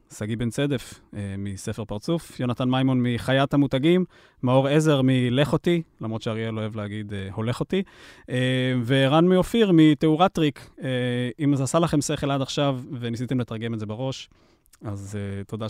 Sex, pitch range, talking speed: male, 110-145 Hz, 140 wpm